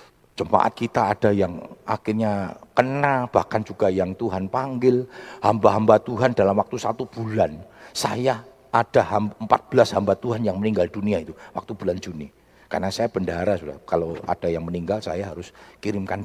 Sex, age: male, 50-69